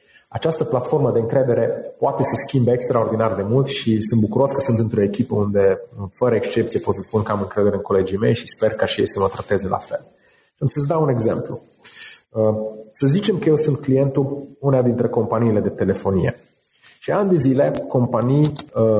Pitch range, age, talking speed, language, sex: 115-150 Hz, 30-49, 190 wpm, Romanian, male